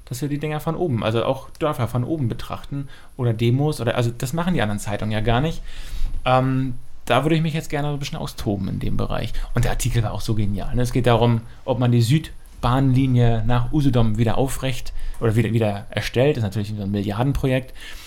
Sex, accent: male, German